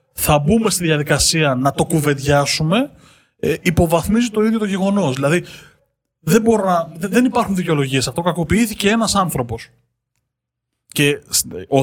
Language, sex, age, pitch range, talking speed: Greek, male, 20-39, 125-175 Hz, 130 wpm